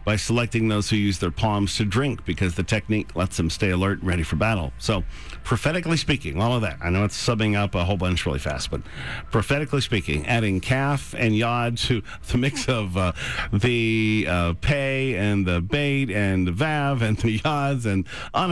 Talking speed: 200 wpm